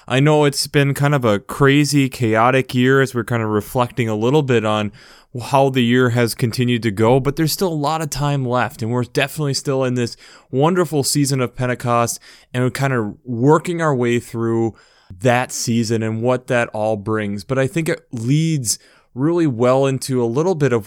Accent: American